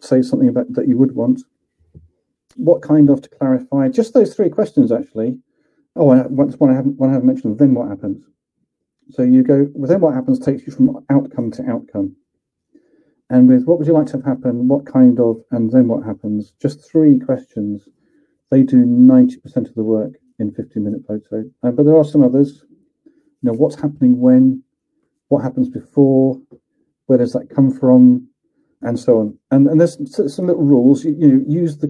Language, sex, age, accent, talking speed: English, male, 40-59, British, 190 wpm